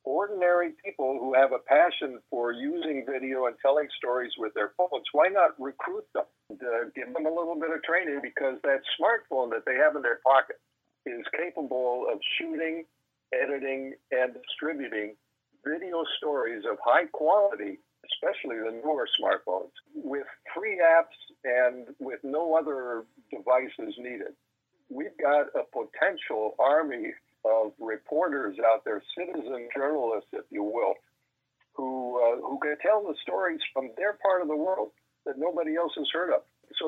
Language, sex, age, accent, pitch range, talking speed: English, male, 60-79, American, 125-160 Hz, 155 wpm